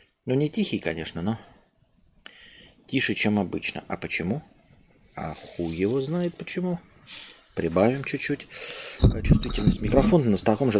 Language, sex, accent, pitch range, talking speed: Russian, male, native, 95-125 Hz, 115 wpm